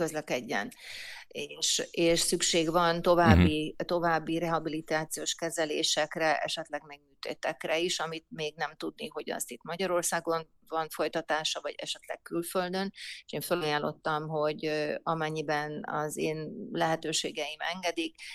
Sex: female